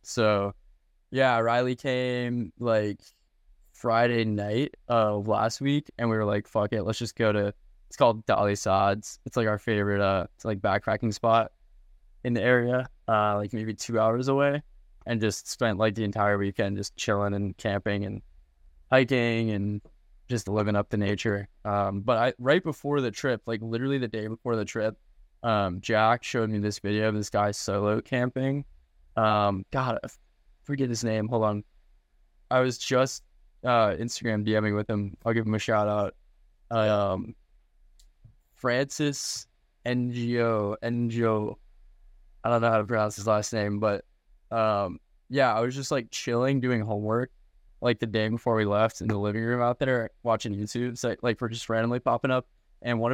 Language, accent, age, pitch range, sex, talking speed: English, American, 10-29, 105-120 Hz, male, 175 wpm